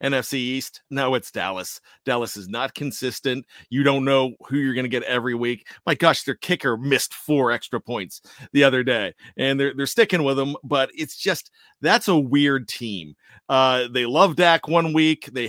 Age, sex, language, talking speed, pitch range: 40-59, male, English, 195 wpm, 135-180 Hz